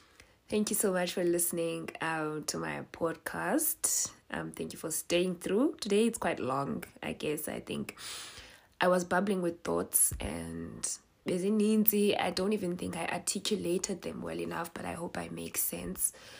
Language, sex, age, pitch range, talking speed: English, female, 20-39, 150-200 Hz, 170 wpm